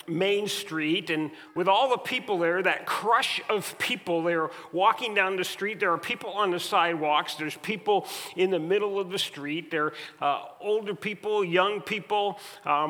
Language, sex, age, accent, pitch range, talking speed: English, male, 40-59, American, 170-220 Hz, 180 wpm